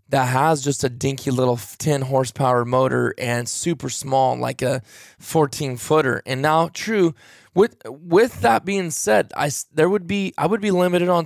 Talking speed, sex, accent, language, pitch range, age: 175 wpm, male, American, English, 130-175 Hz, 20-39